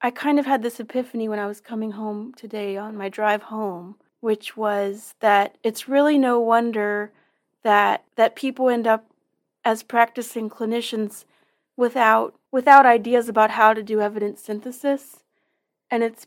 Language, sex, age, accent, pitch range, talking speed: English, female, 30-49, American, 215-250 Hz, 155 wpm